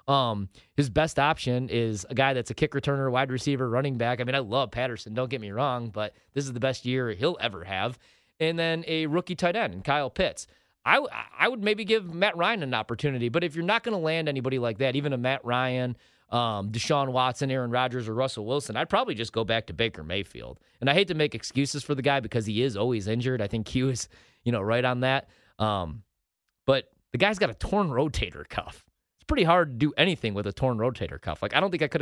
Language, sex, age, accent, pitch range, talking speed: English, male, 30-49, American, 115-150 Hz, 240 wpm